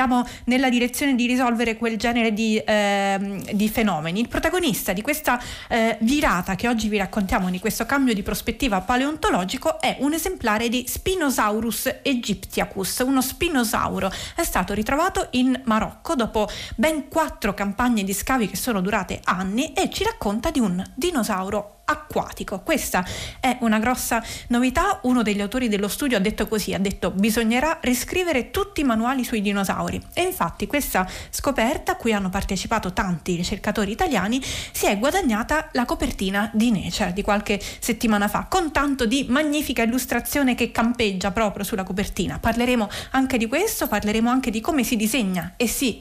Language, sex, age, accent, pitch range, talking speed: Italian, female, 30-49, native, 210-275 Hz, 160 wpm